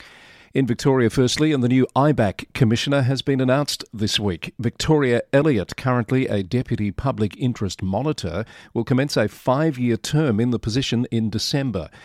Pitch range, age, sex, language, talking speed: 105-130 Hz, 40-59, male, English, 155 wpm